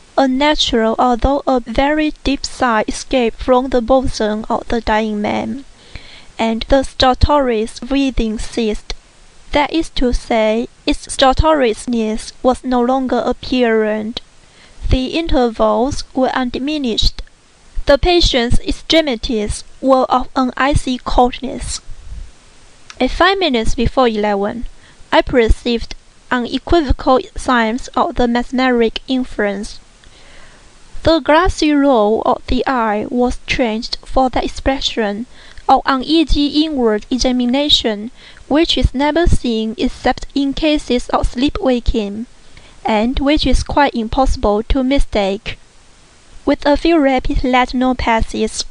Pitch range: 230-280 Hz